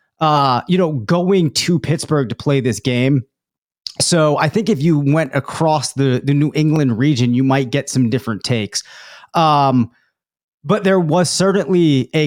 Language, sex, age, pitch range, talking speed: English, male, 30-49, 125-155 Hz, 165 wpm